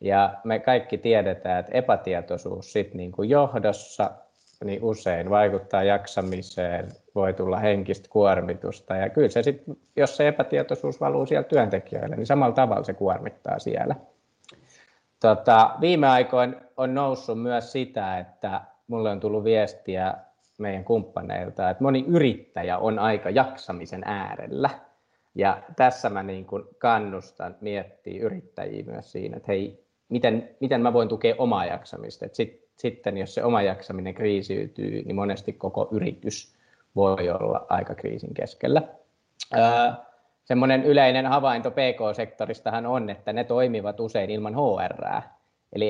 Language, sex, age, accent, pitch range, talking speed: Finnish, male, 20-39, native, 100-125 Hz, 125 wpm